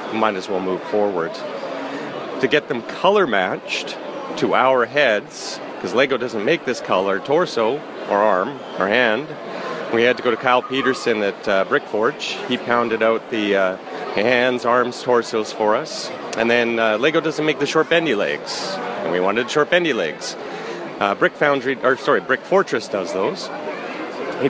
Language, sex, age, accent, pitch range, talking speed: English, male, 30-49, American, 115-145 Hz, 175 wpm